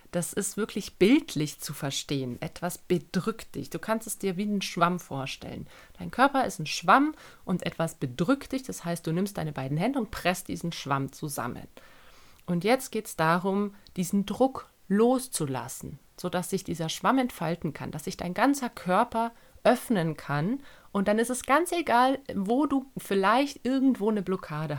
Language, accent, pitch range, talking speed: German, German, 160-215 Hz, 170 wpm